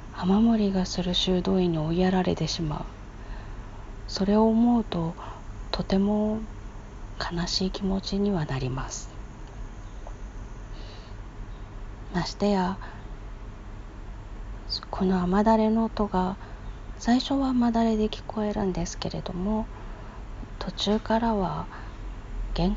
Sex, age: female, 40-59